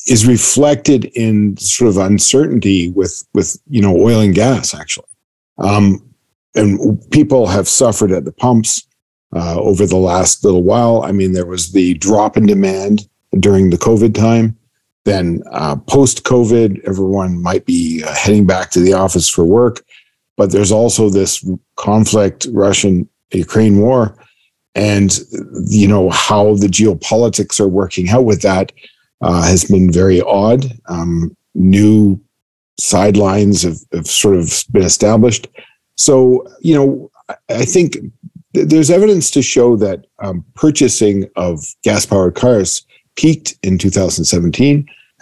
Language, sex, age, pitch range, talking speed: English, male, 50-69, 95-120 Hz, 140 wpm